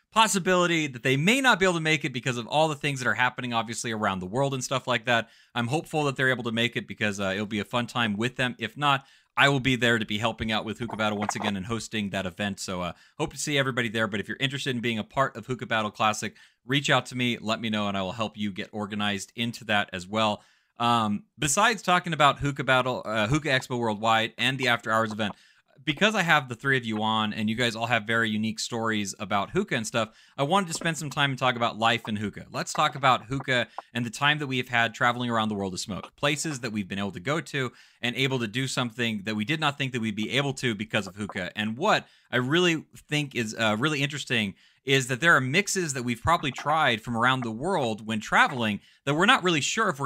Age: 30-49